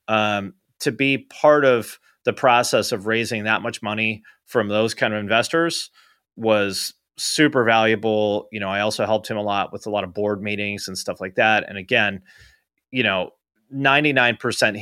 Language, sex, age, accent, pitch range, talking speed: English, male, 30-49, American, 105-125 Hz, 175 wpm